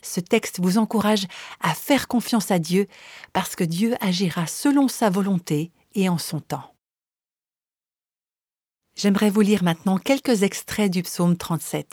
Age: 50-69